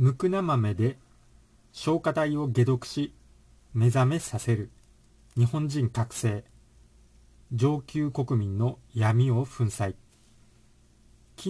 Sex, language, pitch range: male, Japanese, 105-135 Hz